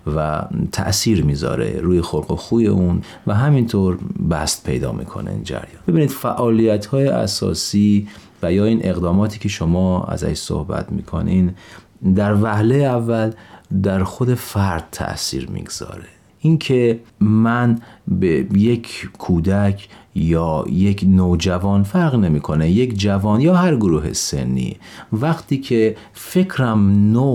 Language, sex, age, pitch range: Persian, male, 40-59, 90-120 Hz